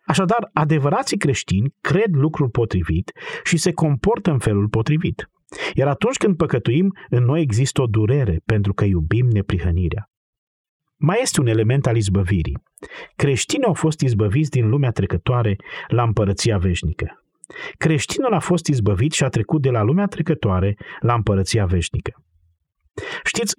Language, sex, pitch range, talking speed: Romanian, male, 100-150 Hz, 140 wpm